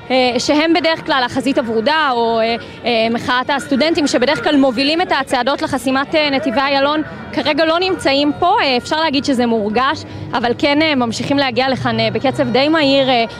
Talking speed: 145 wpm